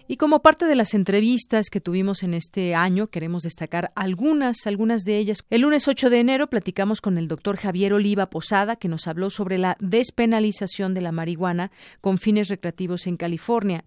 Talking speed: 185 wpm